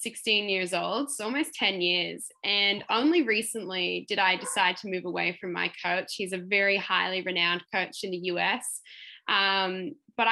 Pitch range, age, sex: 185-230 Hz, 10-29, female